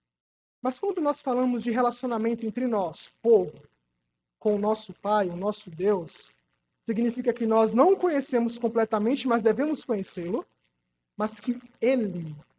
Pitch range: 175-260 Hz